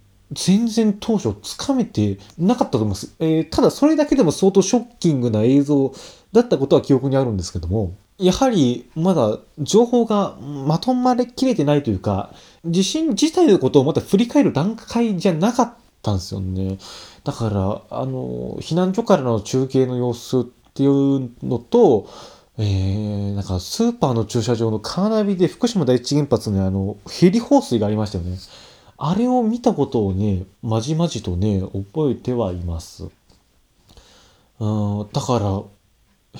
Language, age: Japanese, 20-39